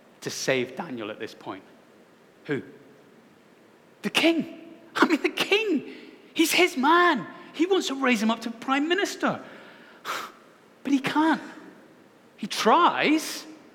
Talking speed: 130 wpm